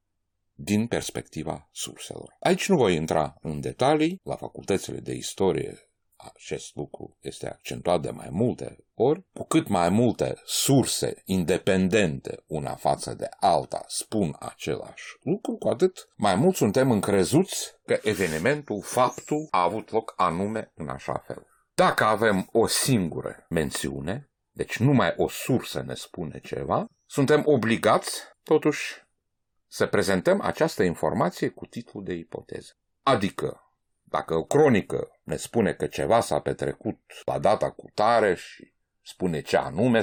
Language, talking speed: Romanian, 135 wpm